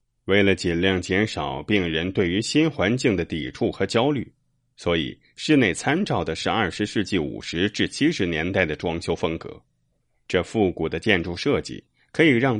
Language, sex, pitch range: Chinese, male, 80-110 Hz